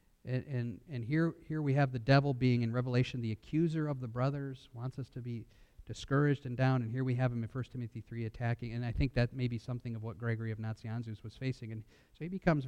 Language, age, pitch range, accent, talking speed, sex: English, 50-69, 120-155 Hz, American, 245 wpm, male